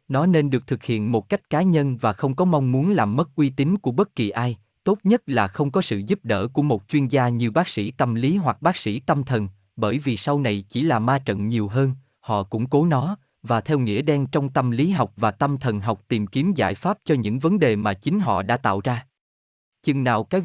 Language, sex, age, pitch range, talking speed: Vietnamese, male, 20-39, 110-150 Hz, 255 wpm